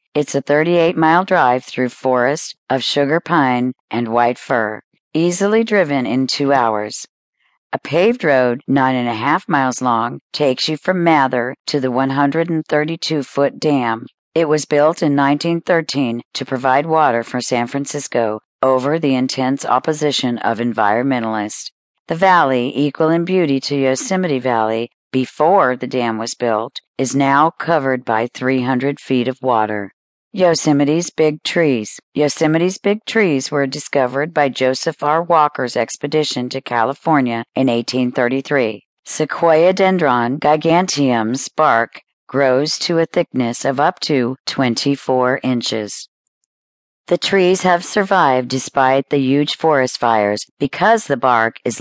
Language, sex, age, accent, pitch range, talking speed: English, female, 40-59, American, 125-155 Hz, 135 wpm